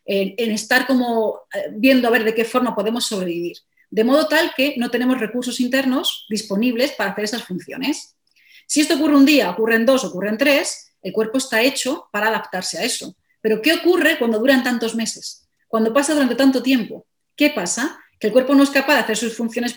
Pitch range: 220-275 Hz